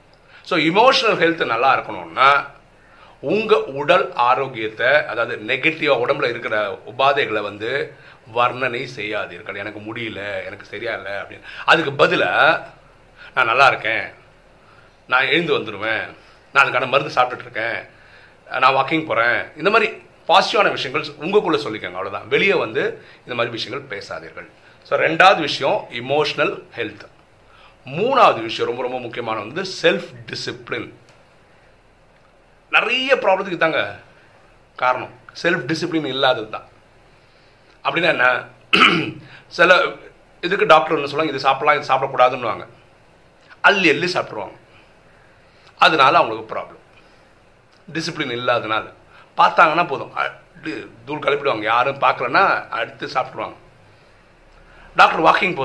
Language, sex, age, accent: Tamil, male, 40-59, native